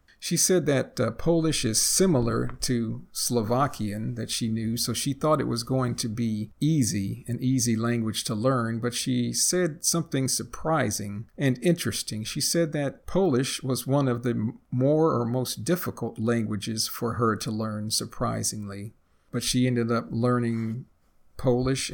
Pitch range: 115-135 Hz